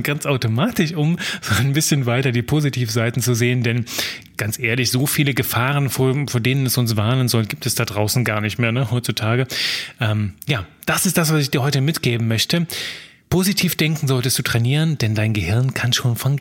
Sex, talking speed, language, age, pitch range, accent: male, 200 wpm, German, 30-49, 120-175 Hz, German